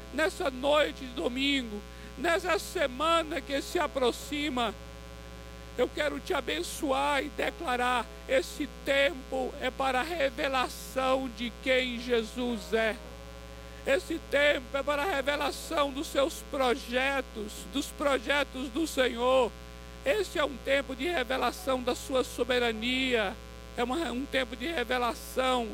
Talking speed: 120 wpm